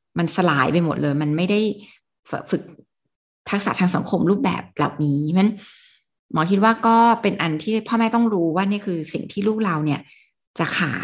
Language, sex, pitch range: Thai, female, 170-210 Hz